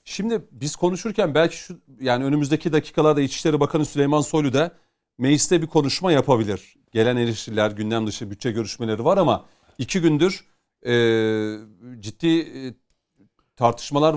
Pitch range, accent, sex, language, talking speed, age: 125-170 Hz, native, male, Turkish, 125 wpm, 40-59